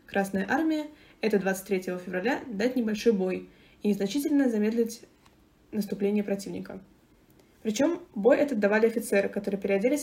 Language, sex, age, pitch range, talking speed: Russian, female, 20-39, 195-240 Hz, 120 wpm